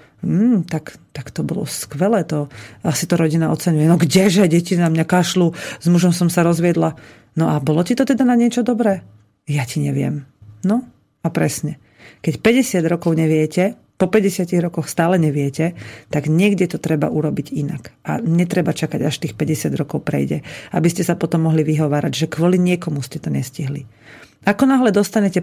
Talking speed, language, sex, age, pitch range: 175 wpm, Slovak, female, 40-59, 150-195 Hz